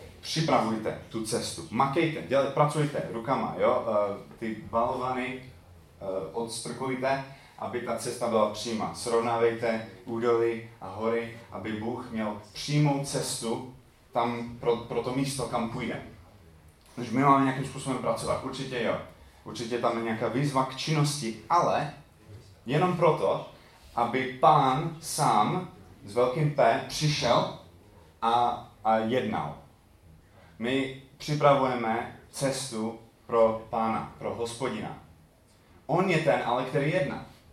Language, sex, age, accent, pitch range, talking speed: Czech, male, 30-49, native, 115-140 Hz, 115 wpm